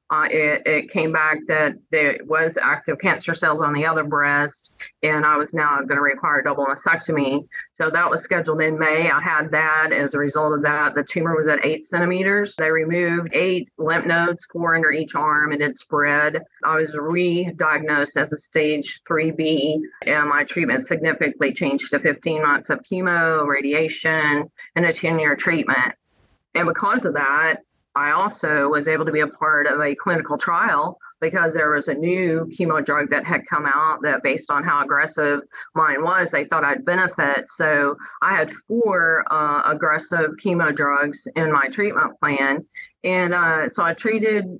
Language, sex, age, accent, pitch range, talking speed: English, female, 30-49, American, 150-170 Hz, 180 wpm